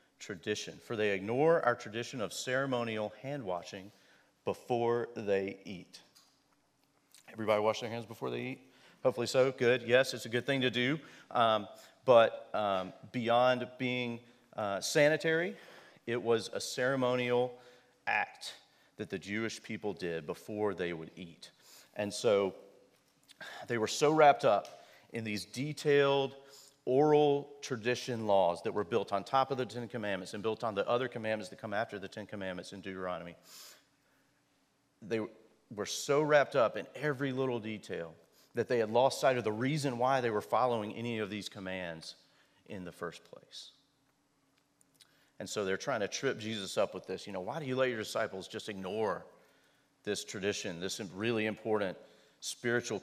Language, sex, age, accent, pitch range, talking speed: English, male, 40-59, American, 105-130 Hz, 160 wpm